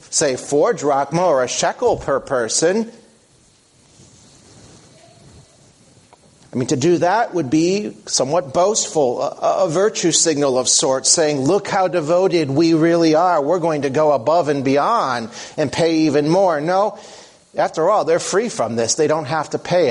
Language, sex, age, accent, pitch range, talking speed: English, male, 40-59, American, 135-170 Hz, 160 wpm